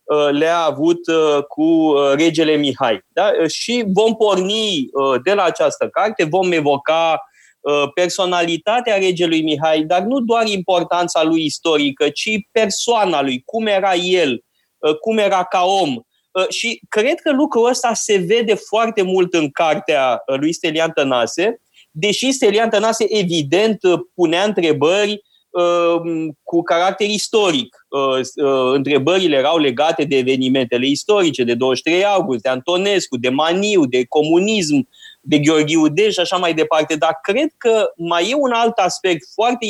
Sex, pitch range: male, 150-210 Hz